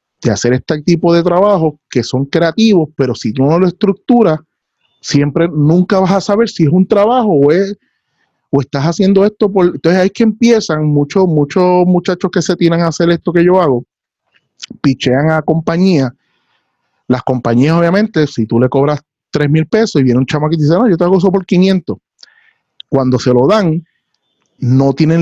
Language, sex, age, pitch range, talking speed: Spanish, male, 30-49, 130-180 Hz, 195 wpm